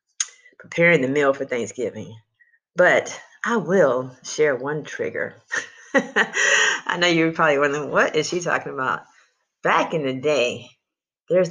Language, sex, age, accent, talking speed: English, female, 30-49, American, 135 wpm